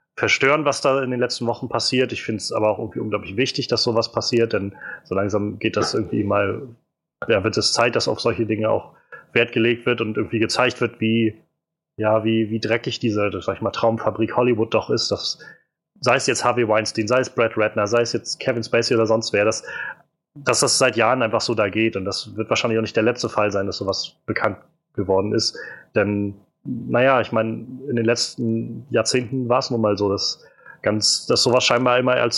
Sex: male